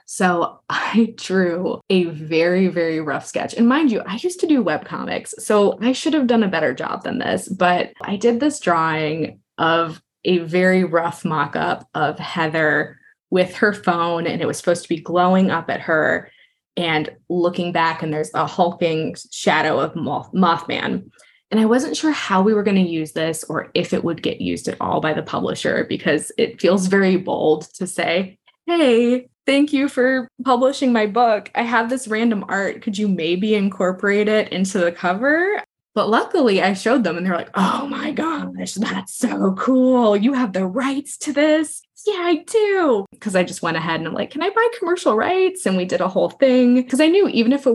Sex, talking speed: female, 200 wpm